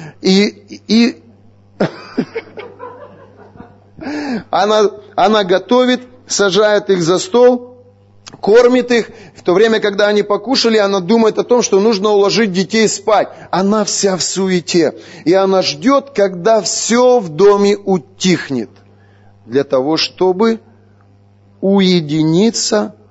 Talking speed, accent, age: 110 wpm, native, 30-49